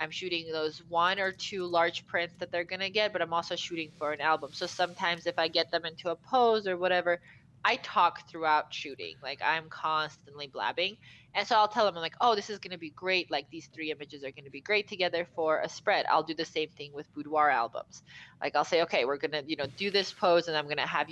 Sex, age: female, 20-39